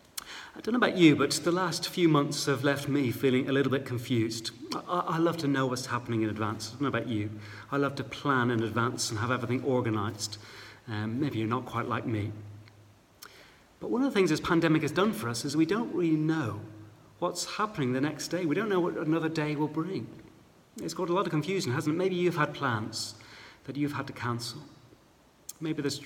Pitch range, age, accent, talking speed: 115-160 Hz, 40-59, British, 220 wpm